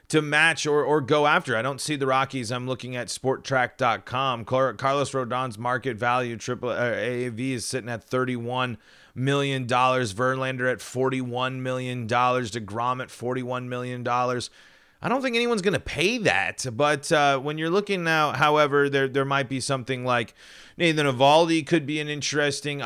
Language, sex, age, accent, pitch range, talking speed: English, male, 30-49, American, 125-145 Hz, 165 wpm